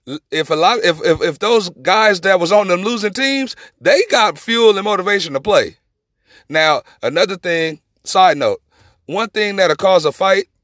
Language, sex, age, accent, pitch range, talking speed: English, male, 30-49, American, 175-270 Hz, 180 wpm